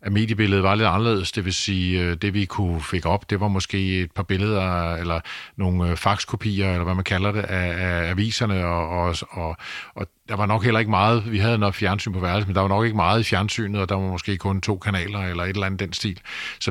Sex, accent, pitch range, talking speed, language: male, native, 90-105 Hz, 235 wpm, Danish